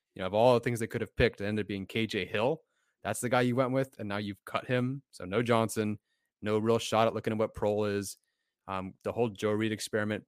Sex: male